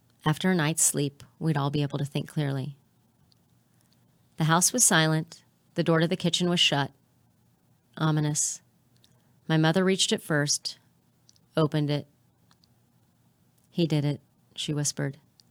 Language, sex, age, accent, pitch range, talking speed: English, female, 40-59, American, 145-170 Hz, 135 wpm